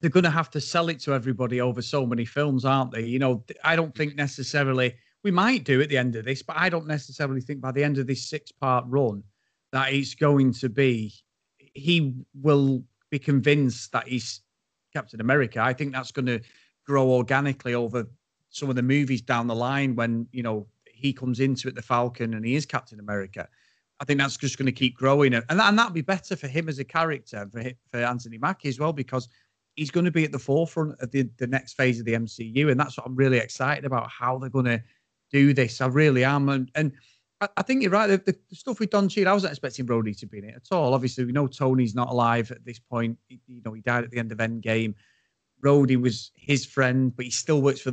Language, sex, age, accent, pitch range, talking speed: English, male, 30-49, British, 120-145 Hz, 235 wpm